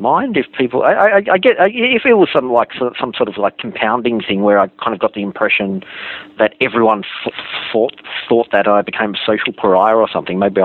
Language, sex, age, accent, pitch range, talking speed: English, male, 40-59, Australian, 100-120 Hz, 220 wpm